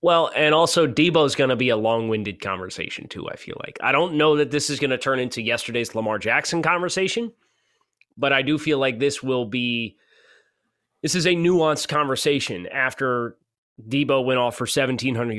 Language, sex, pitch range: English, male, 115-155 Hz